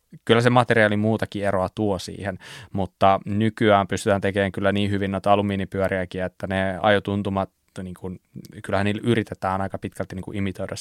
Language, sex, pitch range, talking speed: Finnish, male, 95-115 Hz, 155 wpm